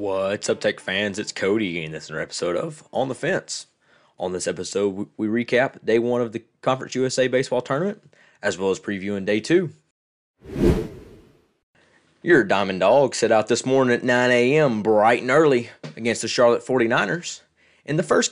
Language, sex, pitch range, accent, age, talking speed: English, male, 110-135 Hz, American, 30-49, 175 wpm